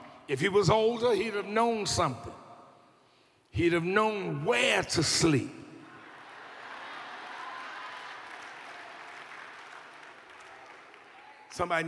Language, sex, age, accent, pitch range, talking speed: English, male, 60-79, American, 200-265 Hz, 75 wpm